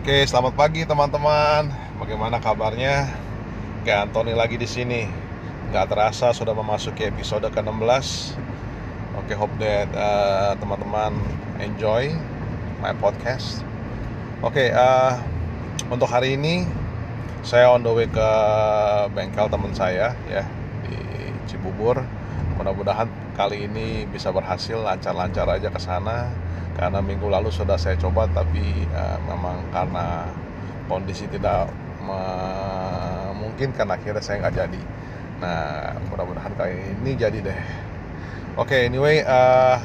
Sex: male